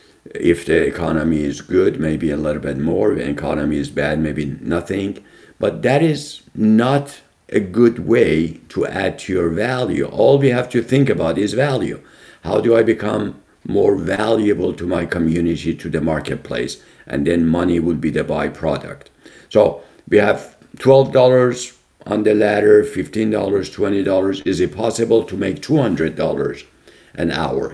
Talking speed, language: 160 wpm, English